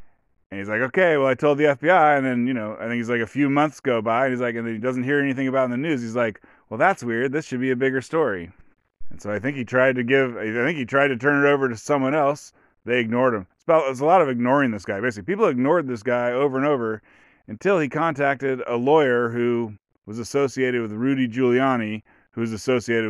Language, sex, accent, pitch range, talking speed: English, male, American, 115-140 Hz, 260 wpm